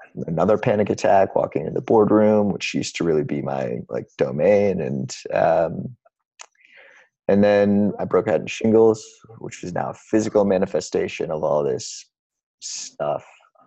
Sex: male